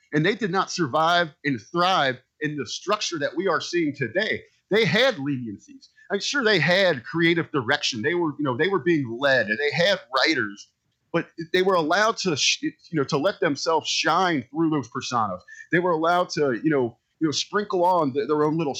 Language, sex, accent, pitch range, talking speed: English, male, American, 140-195 Hz, 200 wpm